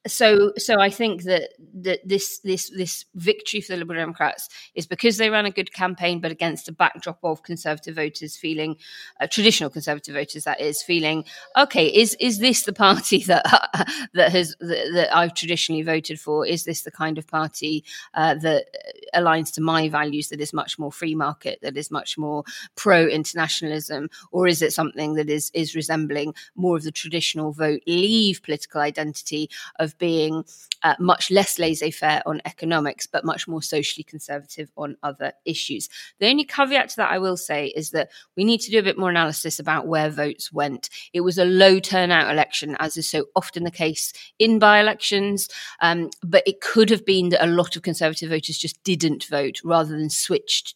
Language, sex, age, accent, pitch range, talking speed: English, female, 20-39, British, 155-185 Hz, 190 wpm